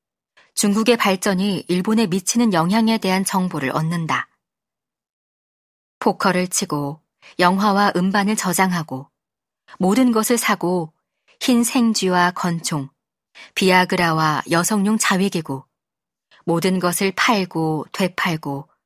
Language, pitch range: Korean, 165-215 Hz